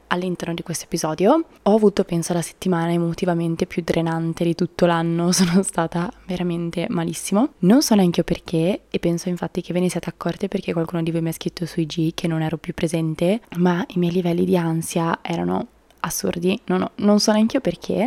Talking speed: 205 wpm